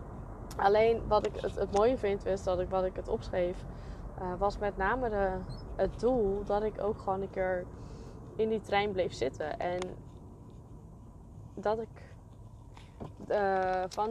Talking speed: 145 wpm